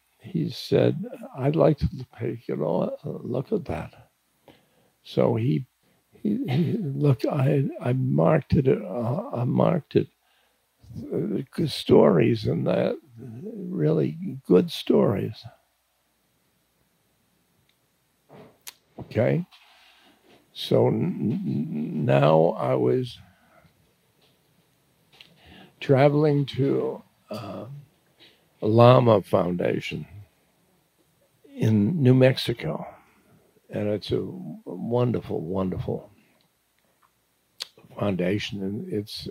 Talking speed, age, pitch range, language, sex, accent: 85 wpm, 60-79, 95-150 Hz, English, male, American